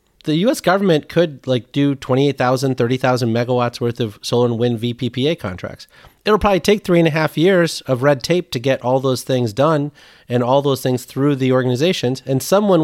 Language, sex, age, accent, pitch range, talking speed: English, male, 40-59, American, 125-165 Hz, 195 wpm